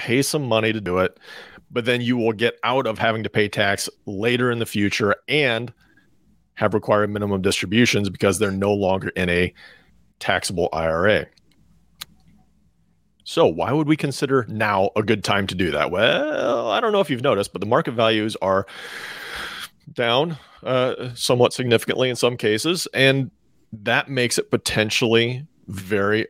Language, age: English, 40-59